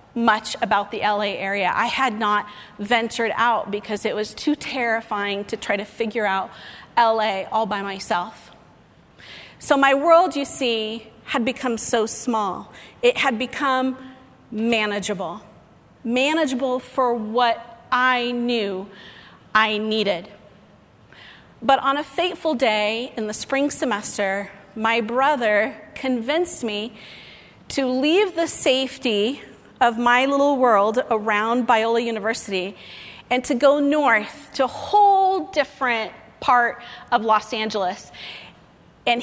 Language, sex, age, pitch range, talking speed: English, female, 40-59, 215-275 Hz, 125 wpm